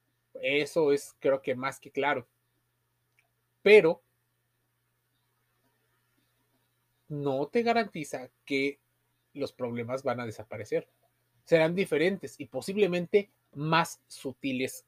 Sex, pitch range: male, 120-165 Hz